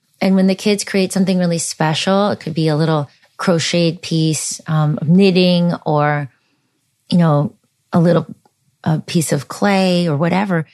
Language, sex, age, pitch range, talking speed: English, female, 30-49, 155-185 Hz, 155 wpm